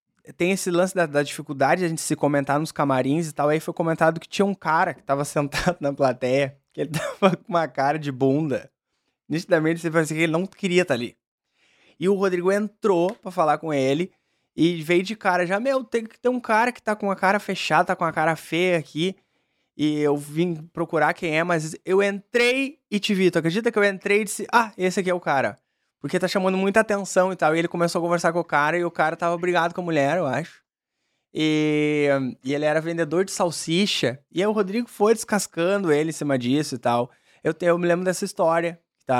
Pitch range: 150-195 Hz